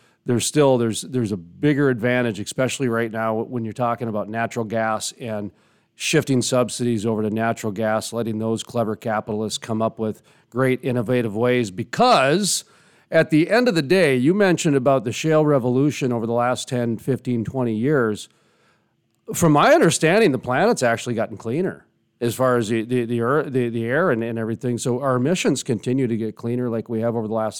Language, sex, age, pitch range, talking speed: English, male, 40-59, 115-135 Hz, 190 wpm